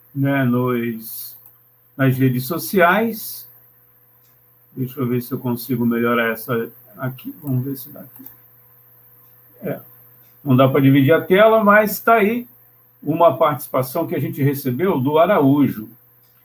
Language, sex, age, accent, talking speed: Portuguese, male, 60-79, Brazilian, 135 wpm